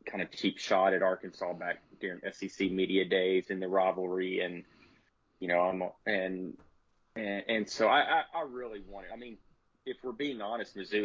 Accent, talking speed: American, 190 wpm